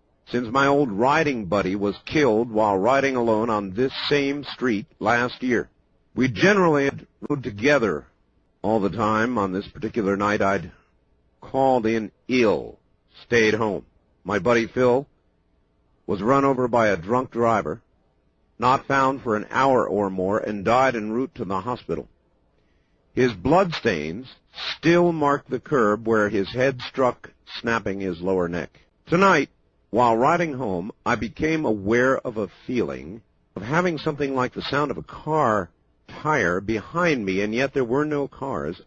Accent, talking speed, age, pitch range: American, 155 wpm, 50-69, 95-140 Hz